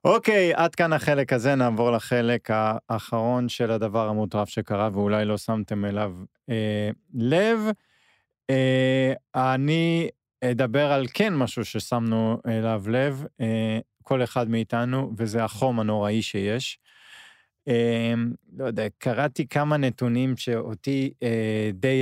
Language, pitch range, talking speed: Hebrew, 115-145 Hz, 125 wpm